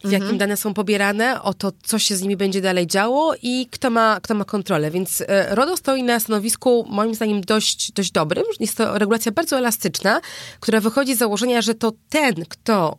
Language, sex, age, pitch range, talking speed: Polish, female, 20-39, 190-235 Hz, 205 wpm